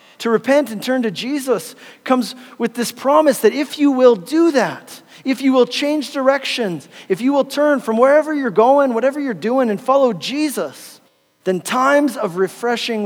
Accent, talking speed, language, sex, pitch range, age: American, 180 wpm, English, male, 175-235 Hz, 40-59